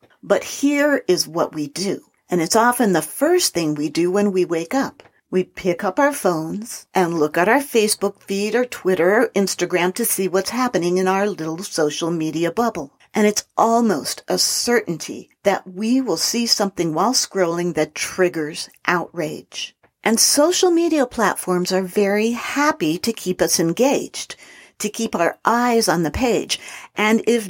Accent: American